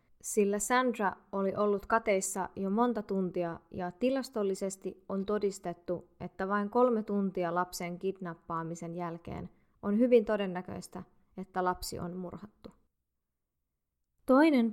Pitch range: 180-215 Hz